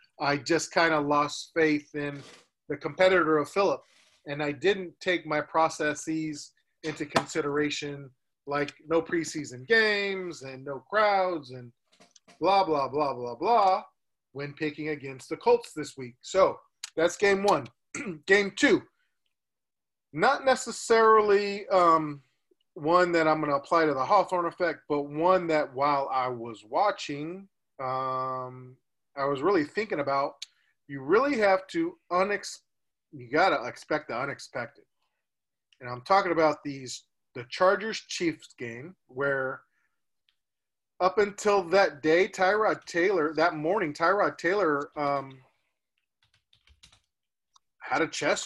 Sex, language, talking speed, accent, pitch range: male, English, 135 wpm, American, 135-185 Hz